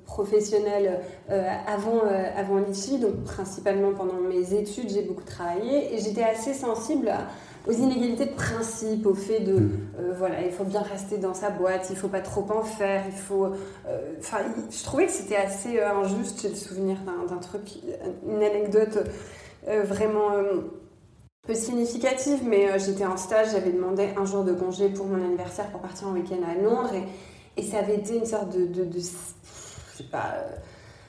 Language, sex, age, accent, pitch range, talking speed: French, female, 20-39, French, 190-220 Hz, 195 wpm